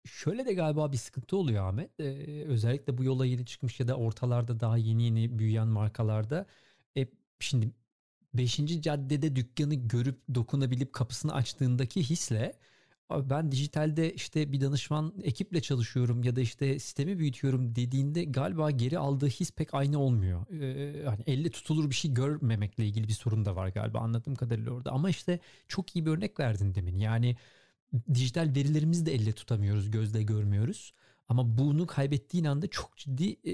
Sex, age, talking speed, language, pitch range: male, 40-59, 155 wpm, Turkish, 115-150 Hz